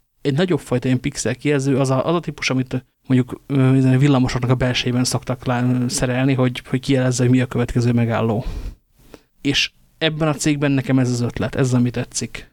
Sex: male